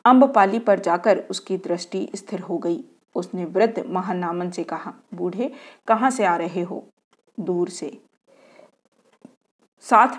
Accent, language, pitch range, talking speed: native, Hindi, 180-235 Hz, 130 wpm